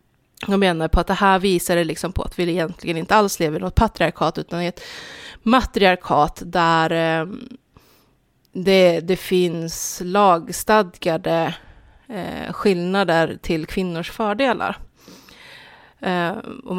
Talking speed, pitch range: 120 wpm, 170-215 Hz